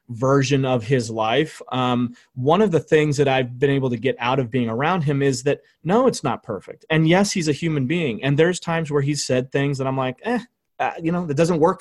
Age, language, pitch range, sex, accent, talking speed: 30-49, English, 125-155 Hz, male, American, 250 wpm